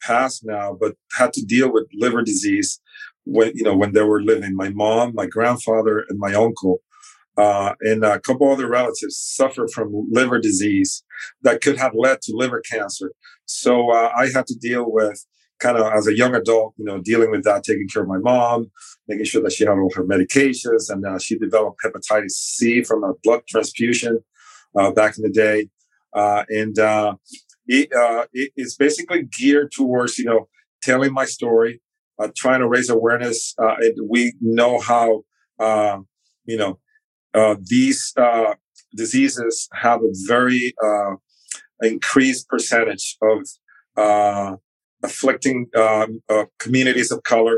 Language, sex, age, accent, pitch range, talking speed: English, male, 40-59, American, 110-130 Hz, 165 wpm